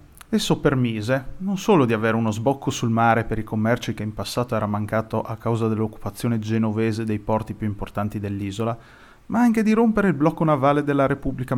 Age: 30-49